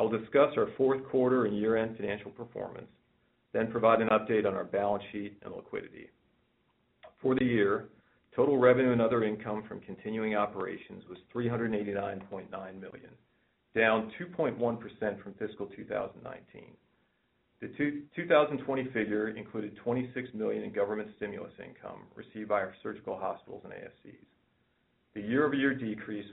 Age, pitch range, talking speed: 40-59, 105-120 Hz, 135 wpm